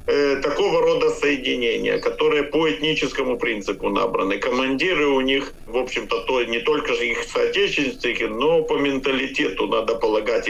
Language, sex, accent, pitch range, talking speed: Russian, male, native, 110-145 Hz, 145 wpm